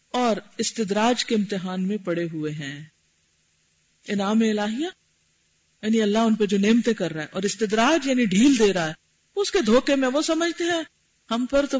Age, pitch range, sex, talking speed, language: 50-69, 170-250 Hz, female, 185 wpm, Urdu